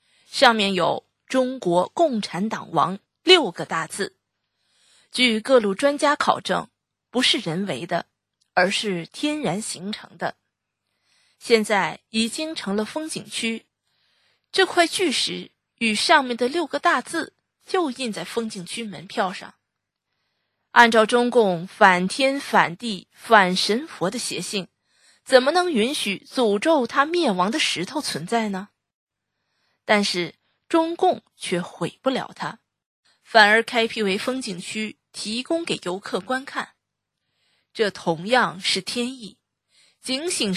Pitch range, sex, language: 190-260 Hz, female, Chinese